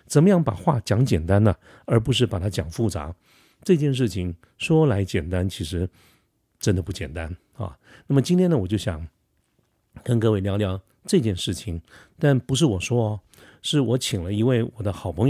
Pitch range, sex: 95-125 Hz, male